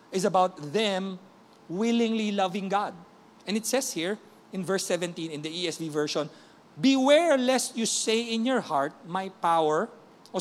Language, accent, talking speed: English, Filipino, 155 wpm